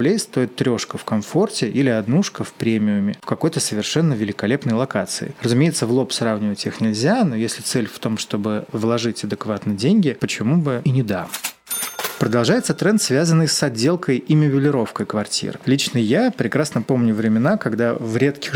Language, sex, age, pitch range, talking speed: Russian, male, 30-49, 110-150 Hz, 160 wpm